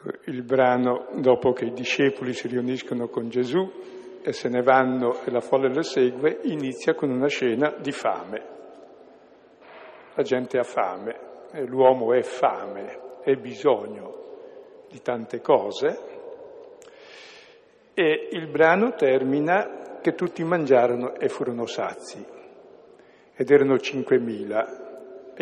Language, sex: Italian, male